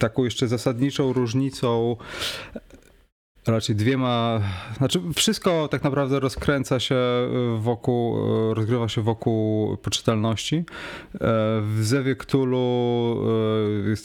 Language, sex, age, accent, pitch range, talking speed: Polish, male, 30-49, native, 105-125 Hz, 85 wpm